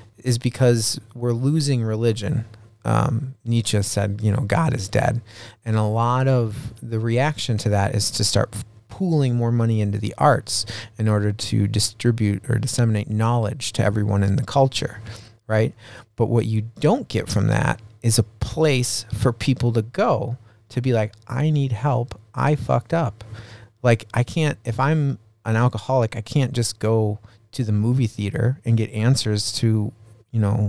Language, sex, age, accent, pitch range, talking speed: English, male, 30-49, American, 105-125 Hz, 170 wpm